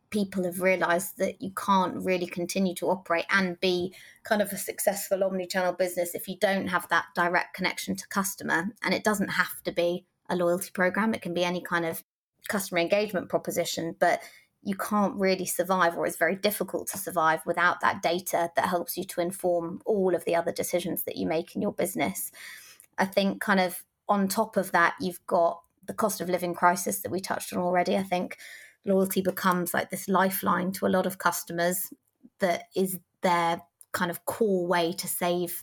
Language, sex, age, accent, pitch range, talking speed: English, female, 20-39, British, 175-195 Hz, 195 wpm